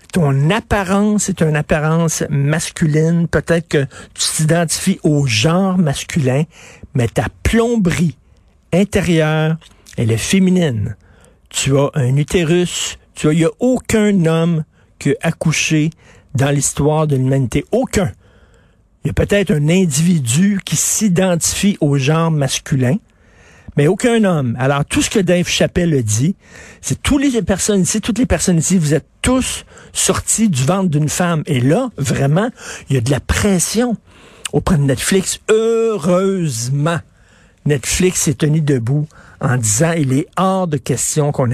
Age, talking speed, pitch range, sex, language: 60-79, 150 wpm, 135-185 Hz, male, French